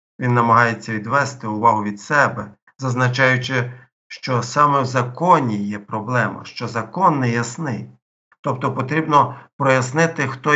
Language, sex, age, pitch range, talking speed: Ukrainian, male, 50-69, 115-135 Hz, 120 wpm